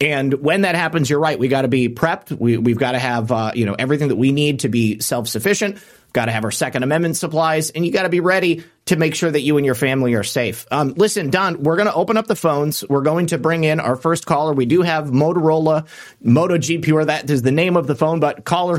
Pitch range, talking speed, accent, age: 130-160 Hz, 265 wpm, American, 30-49